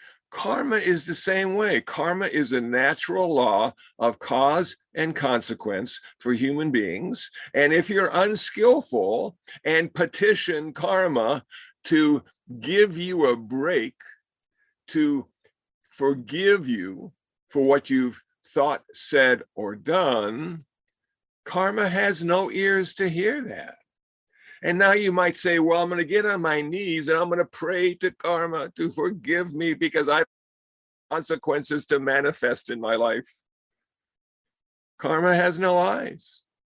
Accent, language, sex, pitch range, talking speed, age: American, English, male, 150-205 Hz, 135 wpm, 60-79